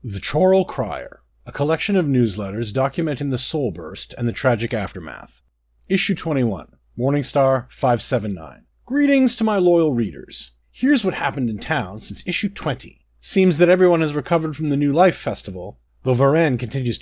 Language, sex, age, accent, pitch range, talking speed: English, male, 40-59, American, 115-175 Hz, 155 wpm